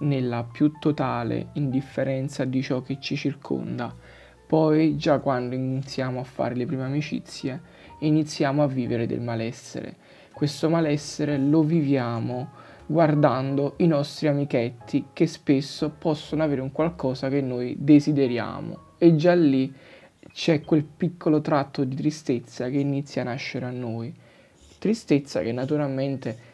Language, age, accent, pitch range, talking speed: Italian, 20-39, native, 130-155 Hz, 130 wpm